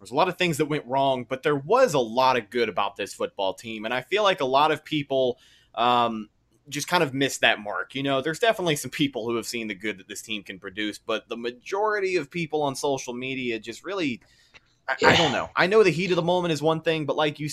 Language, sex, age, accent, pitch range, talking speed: English, male, 20-39, American, 120-165 Hz, 265 wpm